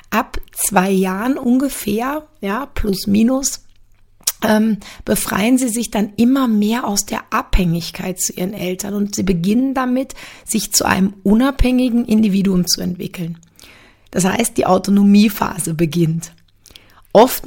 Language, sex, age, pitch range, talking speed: German, female, 30-49, 185-225 Hz, 125 wpm